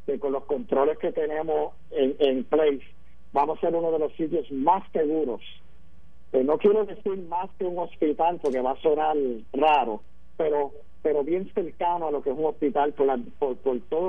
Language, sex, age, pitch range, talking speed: Spanish, male, 50-69, 130-165 Hz, 195 wpm